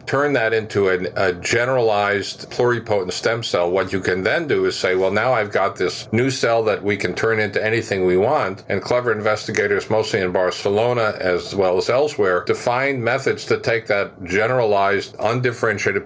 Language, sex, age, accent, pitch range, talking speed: English, male, 50-69, American, 95-115 Hz, 175 wpm